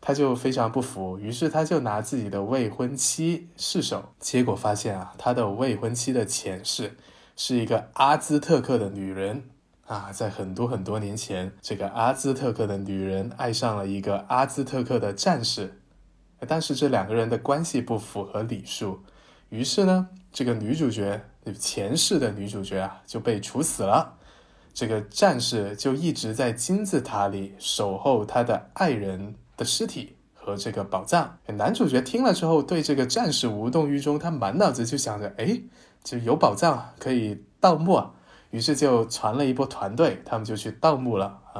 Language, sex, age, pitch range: Chinese, male, 20-39, 105-140 Hz